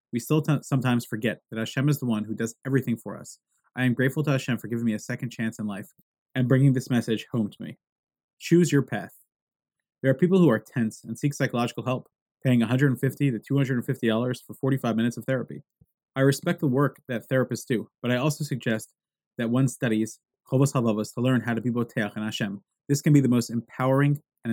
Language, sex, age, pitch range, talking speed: English, male, 20-39, 115-135 Hz, 215 wpm